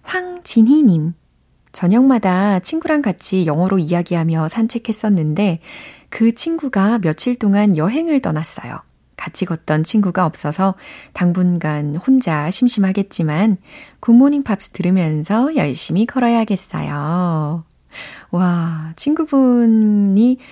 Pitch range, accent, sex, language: 160-220 Hz, native, female, Korean